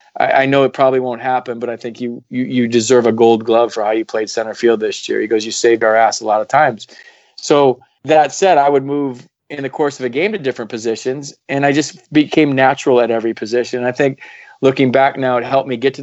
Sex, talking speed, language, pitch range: male, 255 wpm, English, 120-135 Hz